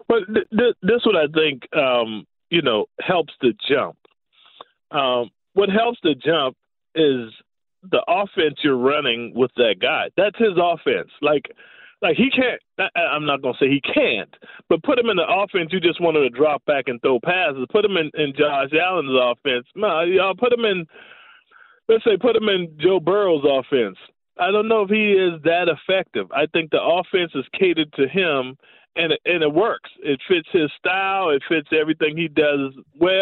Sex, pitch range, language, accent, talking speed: male, 150-220 Hz, English, American, 200 wpm